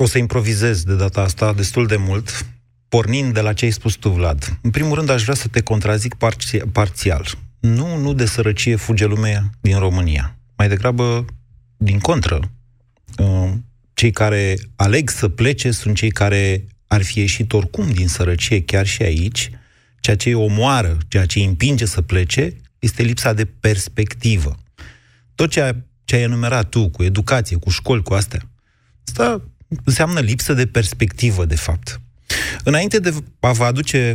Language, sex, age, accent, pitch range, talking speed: Romanian, male, 30-49, native, 100-120 Hz, 165 wpm